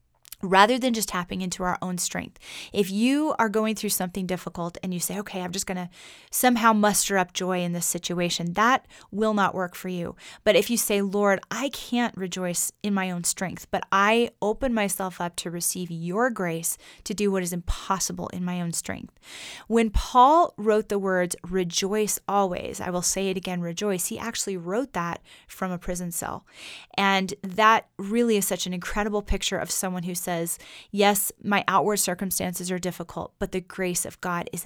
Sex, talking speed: female, 190 wpm